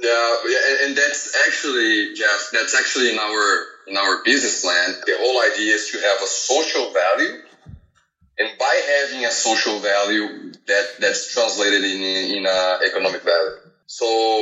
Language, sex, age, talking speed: English, male, 20-39, 160 wpm